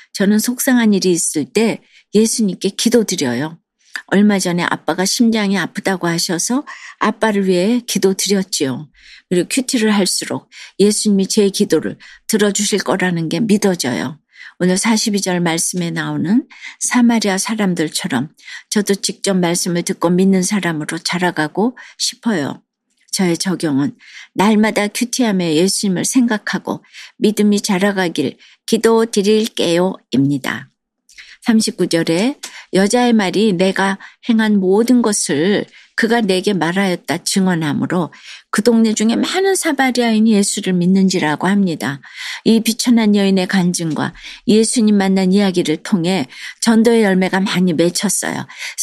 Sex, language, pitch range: female, Korean, 180-225 Hz